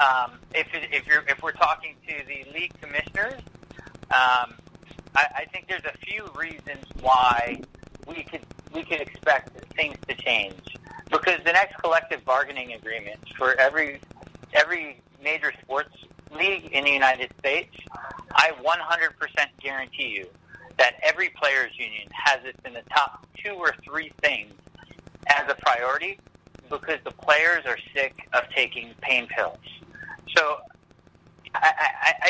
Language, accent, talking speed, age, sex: English, American, 140 wpm, 40-59, male